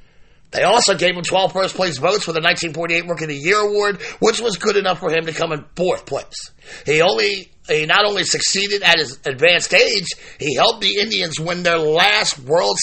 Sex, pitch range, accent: male, 160-205 Hz, American